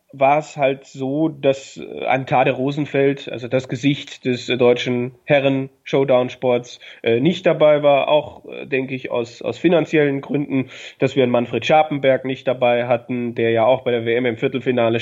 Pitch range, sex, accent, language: 125-140 Hz, male, German, German